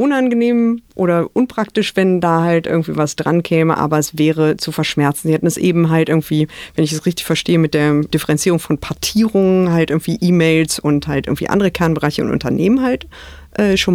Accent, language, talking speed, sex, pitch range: German, German, 190 wpm, female, 155-190 Hz